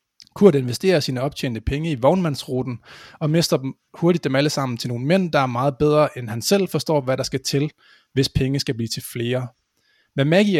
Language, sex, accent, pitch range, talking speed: Danish, male, native, 125-155 Hz, 210 wpm